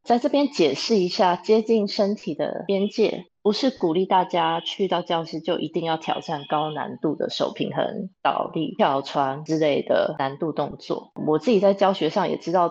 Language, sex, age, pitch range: Chinese, female, 20-39, 160-210 Hz